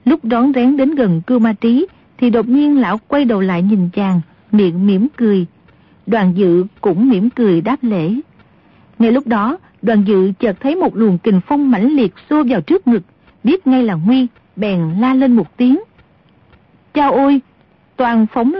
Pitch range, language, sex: 205-265 Hz, Vietnamese, female